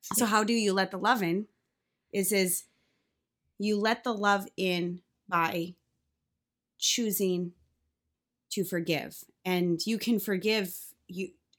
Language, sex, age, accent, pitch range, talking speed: English, female, 20-39, American, 170-205 Hz, 125 wpm